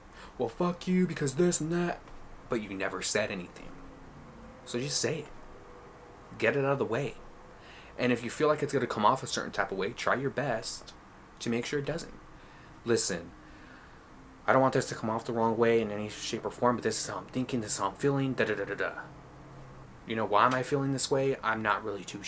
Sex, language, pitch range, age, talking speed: male, English, 105-135 Hz, 20-39, 230 wpm